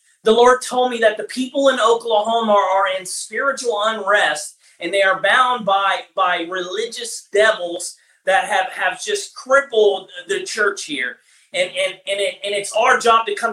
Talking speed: 175 wpm